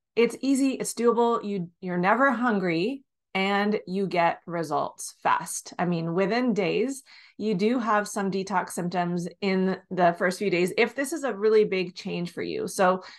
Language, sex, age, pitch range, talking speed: English, female, 30-49, 180-230 Hz, 175 wpm